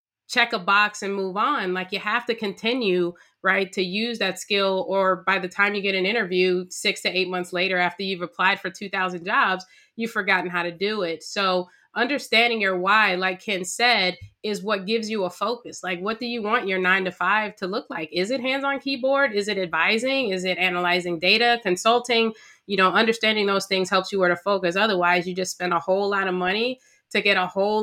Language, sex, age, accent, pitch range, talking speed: English, female, 20-39, American, 180-215 Hz, 220 wpm